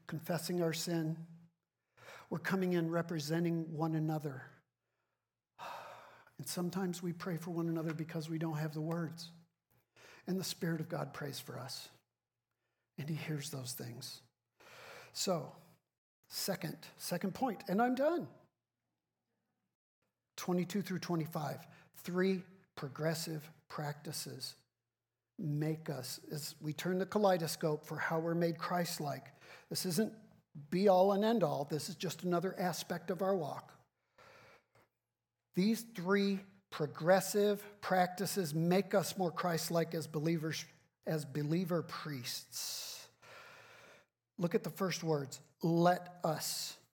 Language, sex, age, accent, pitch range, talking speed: English, male, 50-69, American, 155-180 Hz, 120 wpm